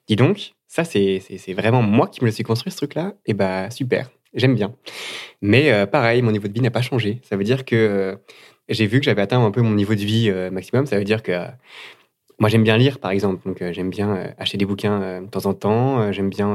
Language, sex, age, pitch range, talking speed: French, male, 20-39, 100-125 Hz, 265 wpm